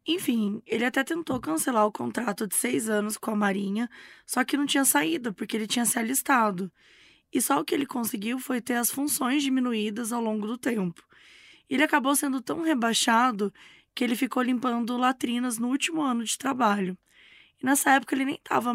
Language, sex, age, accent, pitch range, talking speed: Portuguese, female, 10-29, Brazilian, 220-270 Hz, 190 wpm